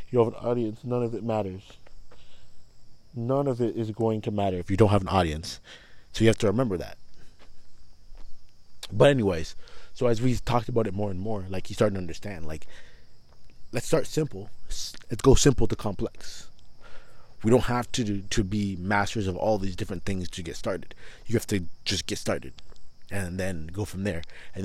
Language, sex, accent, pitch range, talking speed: English, male, American, 100-130 Hz, 195 wpm